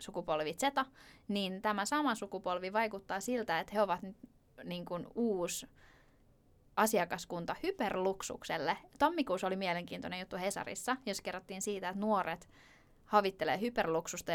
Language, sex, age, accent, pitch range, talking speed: Finnish, female, 20-39, native, 185-255 Hz, 115 wpm